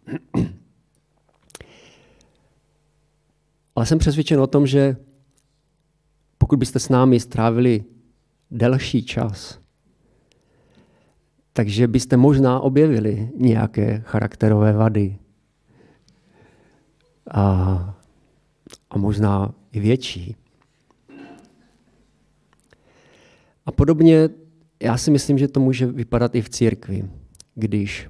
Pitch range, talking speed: 105-125 Hz, 80 wpm